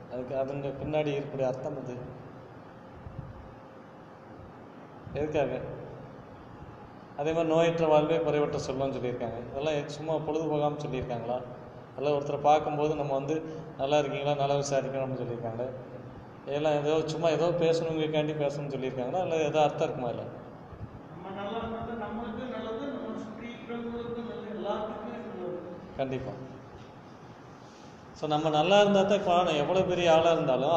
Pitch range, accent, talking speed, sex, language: 140-175 Hz, native, 100 wpm, male, Tamil